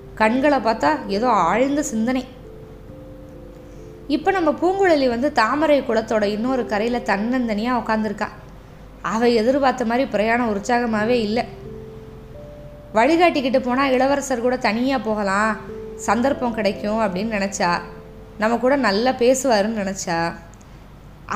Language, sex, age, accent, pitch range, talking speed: Tamil, female, 20-39, native, 200-260 Hz, 100 wpm